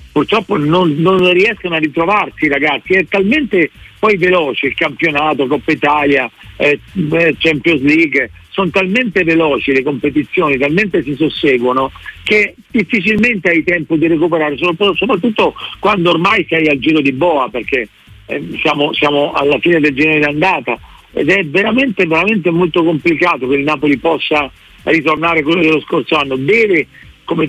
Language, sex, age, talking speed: Italian, male, 50-69, 145 wpm